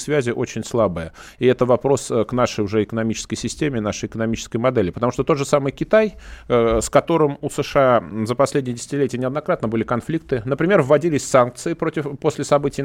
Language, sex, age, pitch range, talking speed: Russian, male, 30-49, 110-145 Hz, 170 wpm